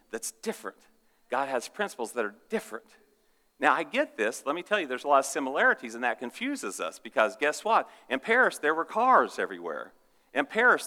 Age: 50-69